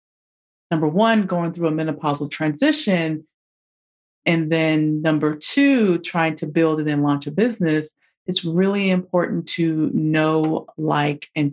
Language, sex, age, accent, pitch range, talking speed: English, female, 30-49, American, 160-210 Hz, 135 wpm